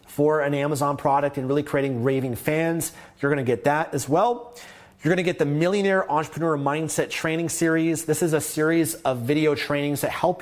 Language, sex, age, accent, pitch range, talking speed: English, male, 30-49, American, 130-160 Hz, 190 wpm